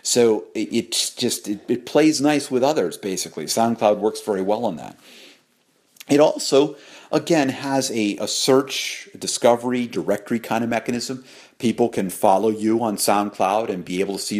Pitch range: 100-125 Hz